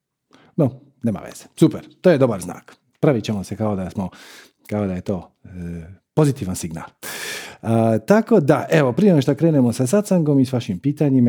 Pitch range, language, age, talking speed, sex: 100-150 Hz, Croatian, 40-59, 180 wpm, male